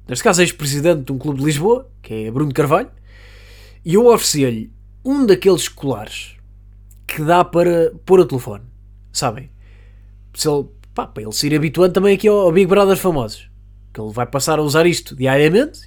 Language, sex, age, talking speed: Portuguese, male, 20-39, 180 wpm